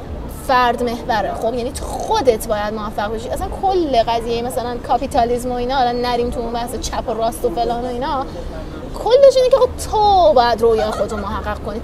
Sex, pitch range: female, 255-375 Hz